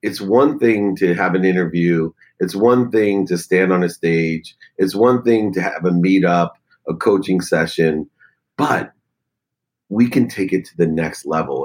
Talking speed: 175 wpm